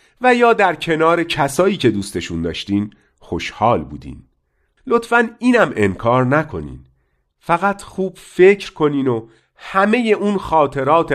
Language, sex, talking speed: Persian, male, 120 wpm